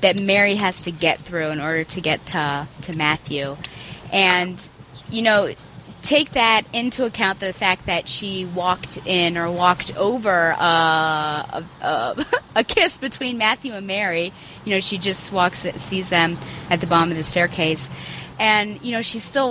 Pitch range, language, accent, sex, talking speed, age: 160-215 Hz, English, American, female, 170 wpm, 30-49